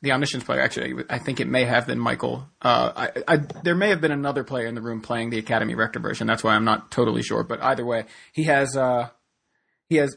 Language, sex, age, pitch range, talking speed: English, male, 20-39, 120-145 Hz, 250 wpm